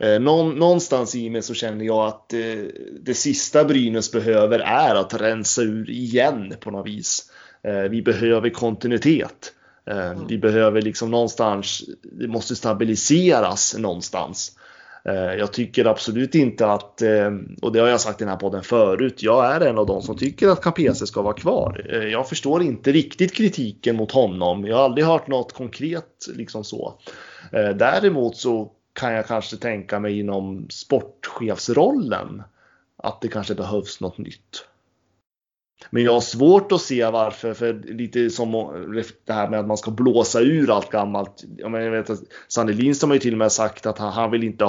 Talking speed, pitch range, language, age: 165 wpm, 105-125 Hz, Swedish, 20-39